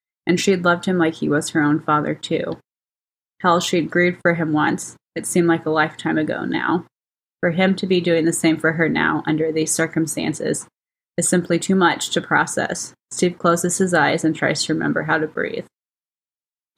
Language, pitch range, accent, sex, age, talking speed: English, 160-180 Hz, American, female, 20-39, 200 wpm